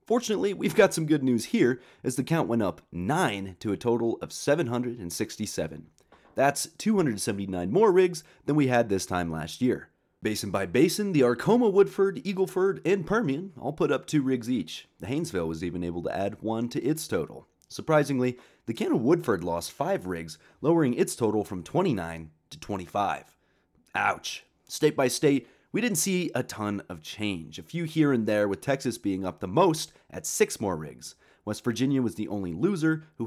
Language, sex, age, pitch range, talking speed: English, male, 30-49, 95-150 Hz, 185 wpm